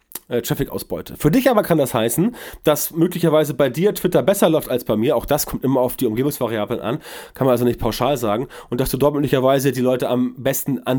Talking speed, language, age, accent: 225 wpm, German, 30-49, German